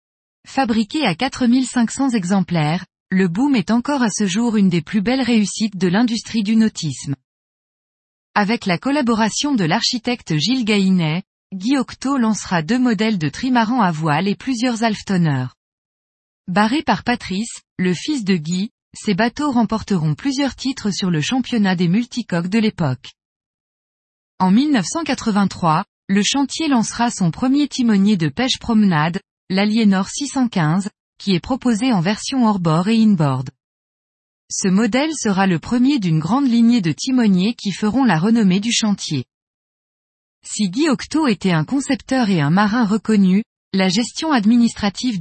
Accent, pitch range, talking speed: French, 185-245 Hz, 140 wpm